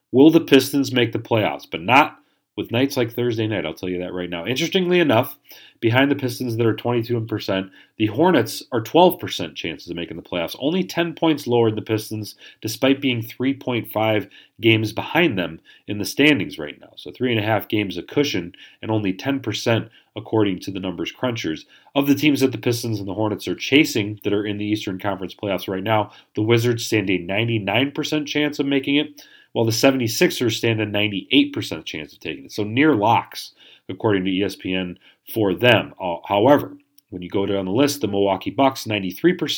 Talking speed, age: 190 wpm, 40-59